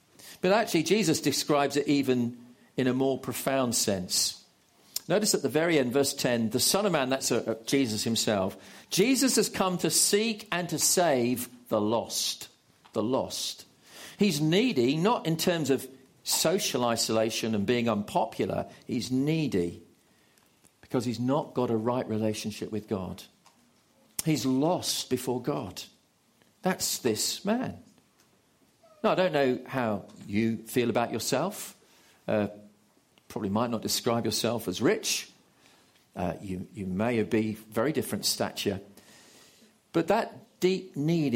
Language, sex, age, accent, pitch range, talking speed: English, male, 50-69, British, 110-160 Hz, 140 wpm